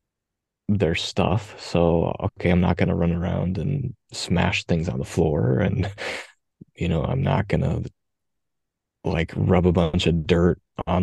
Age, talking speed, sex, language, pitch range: 20-39, 160 wpm, male, English, 90-105 Hz